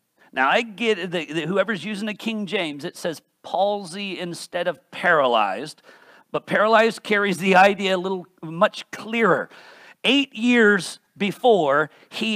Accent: American